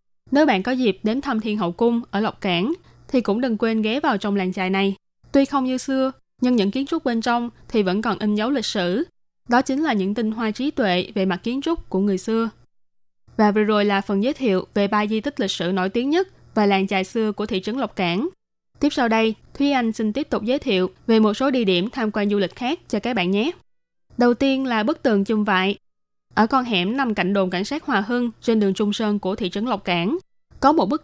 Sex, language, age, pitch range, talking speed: female, Vietnamese, 20-39, 195-245 Hz, 255 wpm